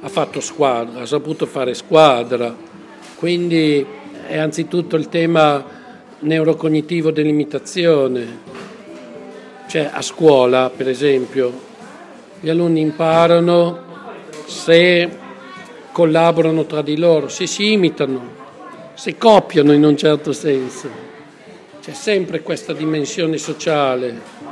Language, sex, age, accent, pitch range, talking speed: Italian, male, 50-69, native, 145-165 Hz, 100 wpm